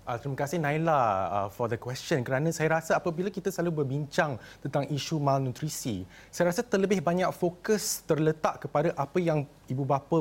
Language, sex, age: Malay, male, 30-49